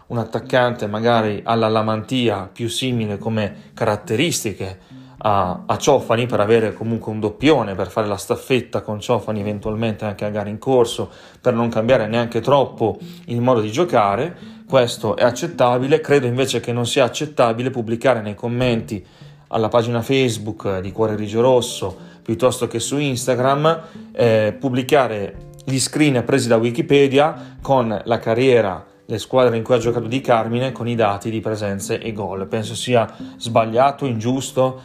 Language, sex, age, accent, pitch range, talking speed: Italian, male, 30-49, native, 110-130 Hz, 155 wpm